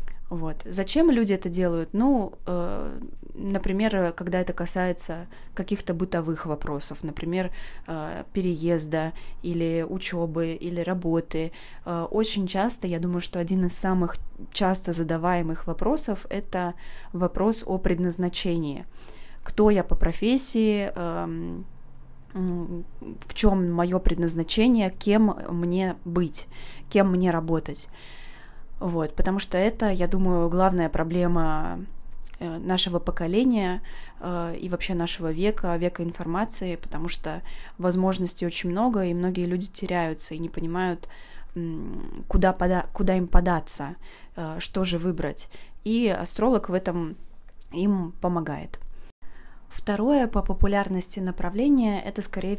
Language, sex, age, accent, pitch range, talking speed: Russian, female, 20-39, native, 170-195 Hz, 115 wpm